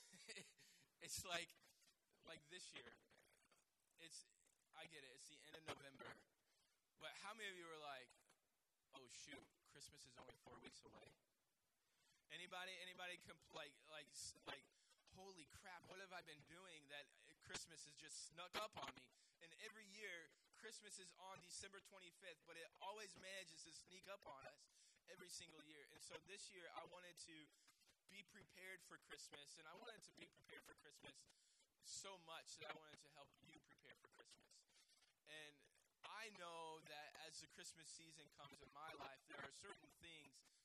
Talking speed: 170 wpm